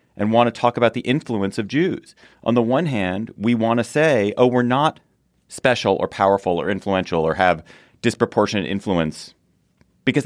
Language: English